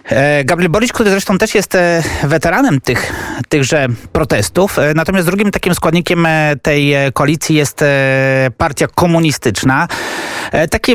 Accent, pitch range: native, 135-165 Hz